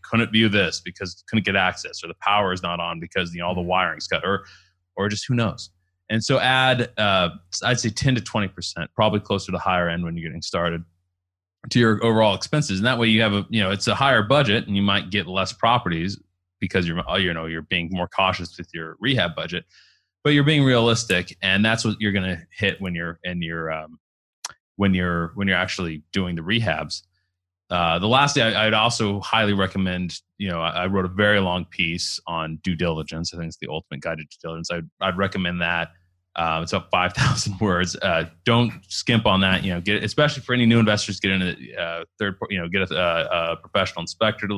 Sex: male